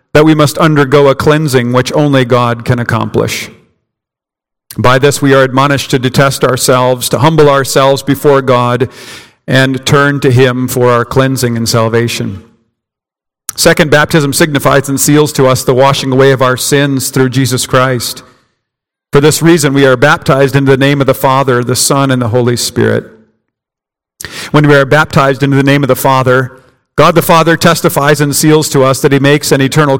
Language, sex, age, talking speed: English, male, 50-69, 180 wpm